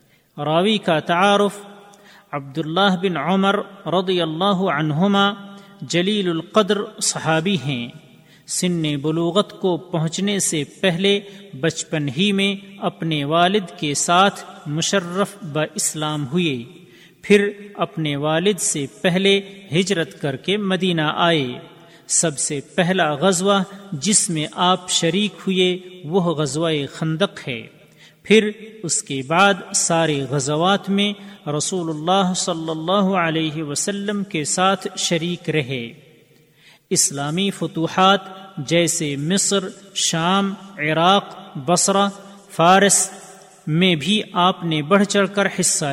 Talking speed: 110 wpm